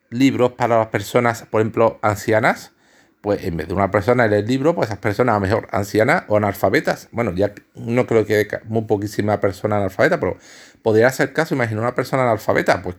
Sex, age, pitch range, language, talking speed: male, 50-69, 110-140 Hz, Spanish, 195 wpm